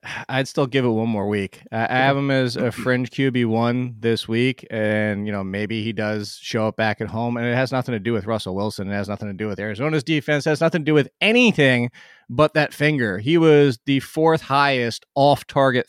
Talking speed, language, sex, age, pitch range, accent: 235 wpm, English, male, 20-39, 120-155 Hz, American